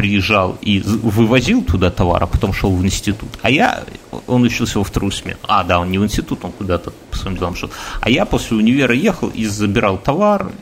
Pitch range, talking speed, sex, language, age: 100-125 Hz, 210 wpm, male, Russian, 30-49